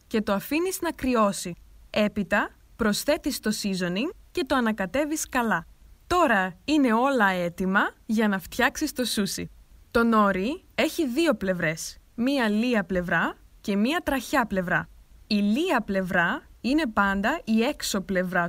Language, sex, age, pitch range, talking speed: Greek, female, 20-39, 195-280 Hz, 135 wpm